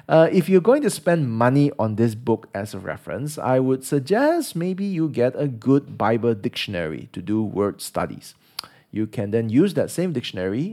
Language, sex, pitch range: English, male, 110-155 Hz